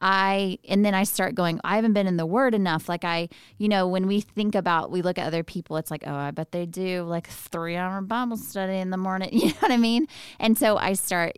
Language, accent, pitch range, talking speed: English, American, 170-205 Hz, 265 wpm